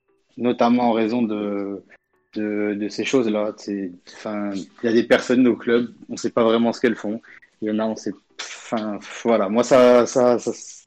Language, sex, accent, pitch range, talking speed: French, male, French, 100-120 Hz, 195 wpm